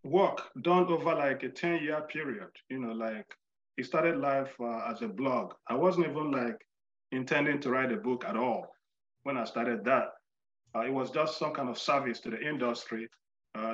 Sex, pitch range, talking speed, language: male, 120-155 Hz, 195 wpm, English